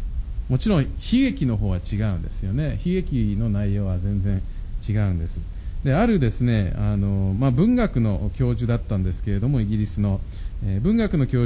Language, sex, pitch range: Japanese, male, 100-145 Hz